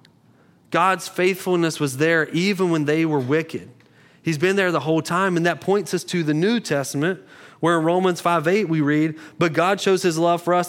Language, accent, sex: English, American, male